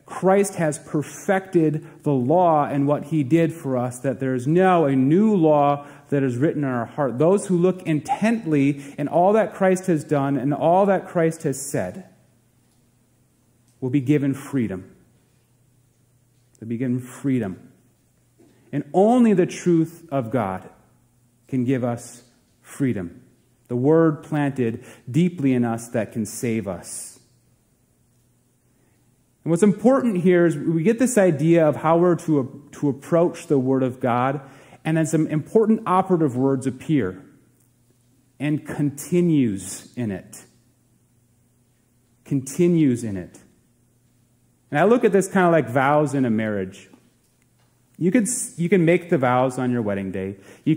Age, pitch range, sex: 30-49, 125-165 Hz, male